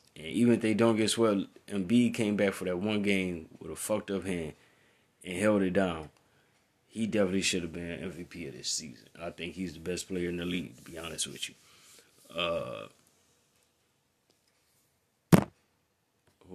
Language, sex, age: English, male, 20-39